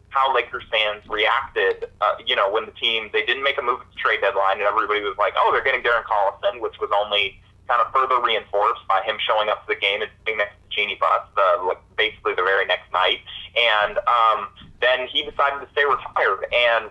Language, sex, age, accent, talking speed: English, male, 30-49, American, 230 wpm